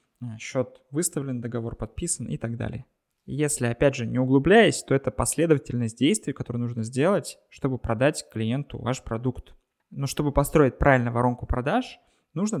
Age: 20-39